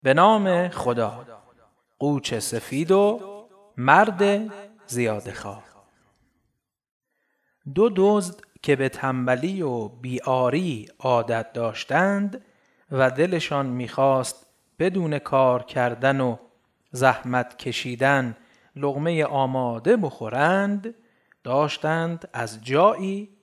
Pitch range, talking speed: 120-200 Hz, 80 wpm